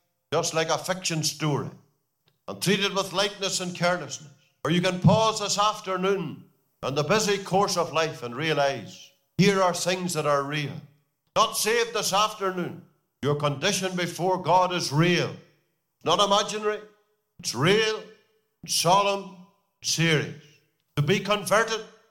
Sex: male